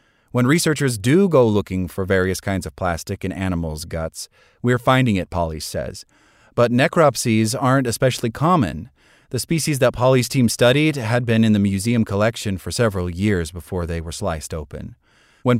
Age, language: 30-49, English